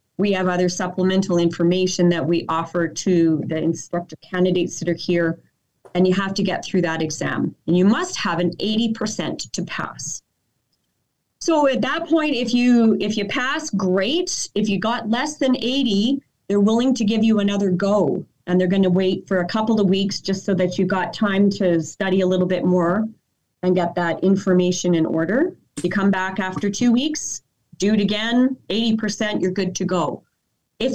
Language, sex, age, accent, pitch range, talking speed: English, female, 30-49, American, 175-215 Hz, 190 wpm